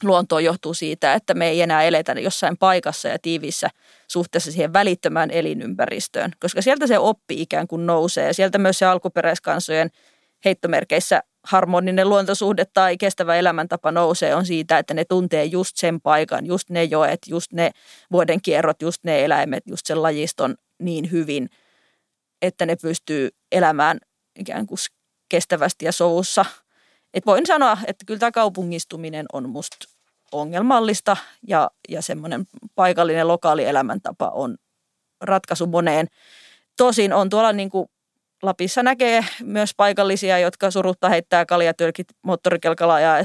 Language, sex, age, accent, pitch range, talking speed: Finnish, female, 20-39, native, 165-195 Hz, 135 wpm